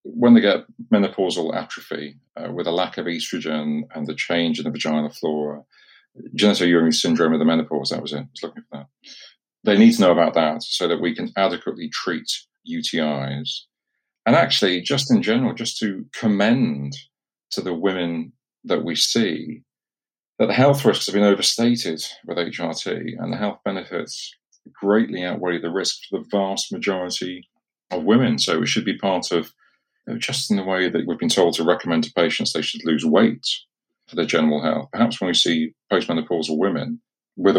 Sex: male